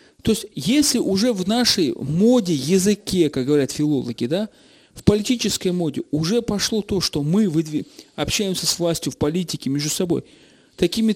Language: Russian